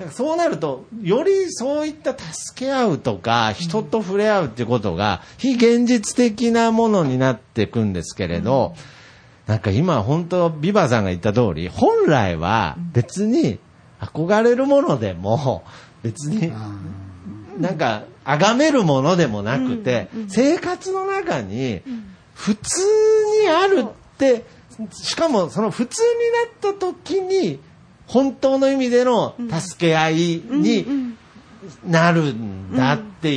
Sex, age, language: male, 50-69, Japanese